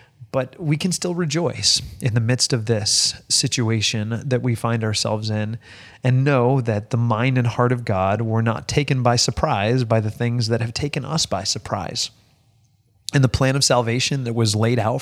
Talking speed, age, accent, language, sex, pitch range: 190 wpm, 30-49, American, English, male, 110-135 Hz